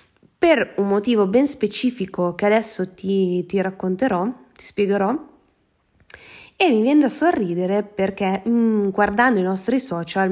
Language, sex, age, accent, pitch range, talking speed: Italian, female, 20-39, native, 190-250 Hz, 135 wpm